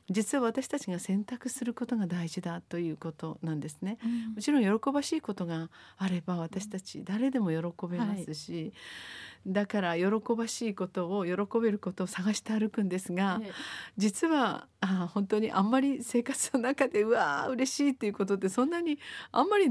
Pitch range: 180-240 Hz